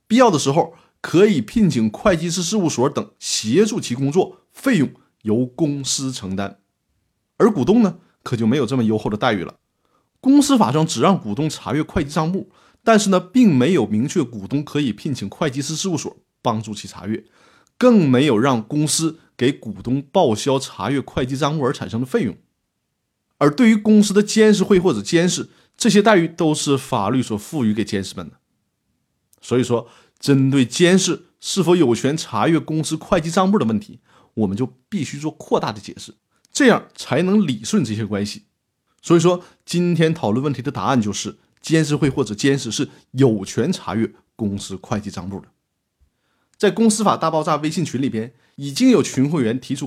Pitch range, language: 115-175 Hz, Chinese